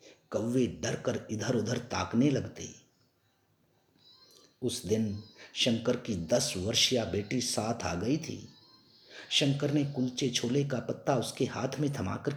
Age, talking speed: 50-69, 130 wpm